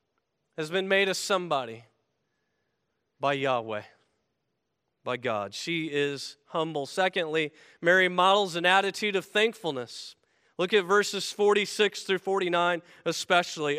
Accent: American